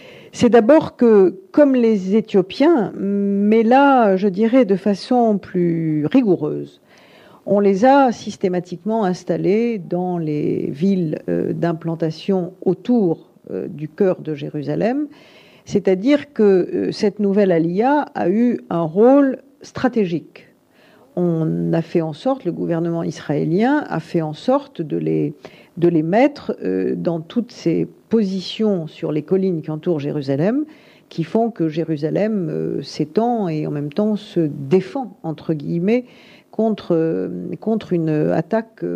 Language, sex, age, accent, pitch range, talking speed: French, female, 50-69, French, 170-225 Hz, 125 wpm